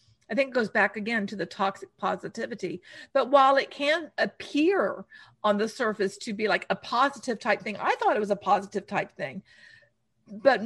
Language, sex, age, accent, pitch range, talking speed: English, female, 50-69, American, 195-245 Hz, 190 wpm